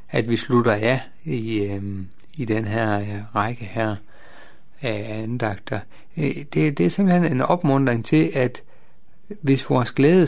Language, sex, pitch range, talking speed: Danish, male, 110-150 Hz, 135 wpm